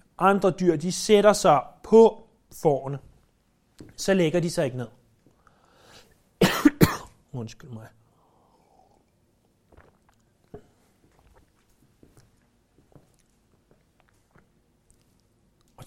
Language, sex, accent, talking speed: Danish, male, native, 60 wpm